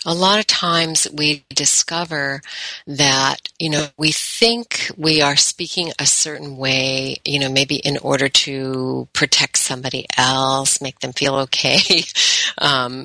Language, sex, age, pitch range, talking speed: English, female, 50-69, 130-155 Hz, 145 wpm